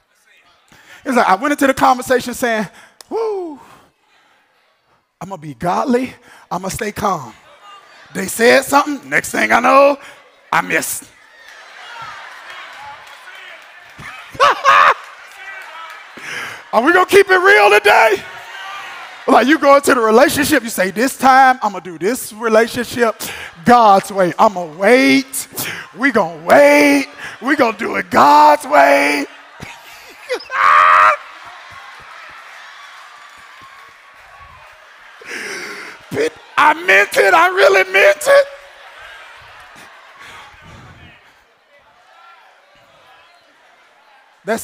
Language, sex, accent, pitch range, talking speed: English, male, American, 200-300 Hz, 100 wpm